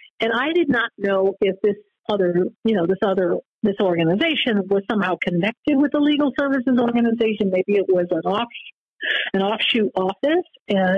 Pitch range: 185-250 Hz